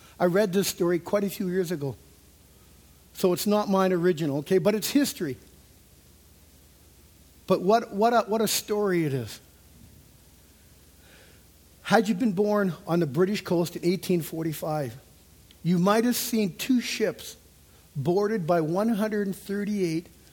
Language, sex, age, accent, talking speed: English, male, 60-79, American, 135 wpm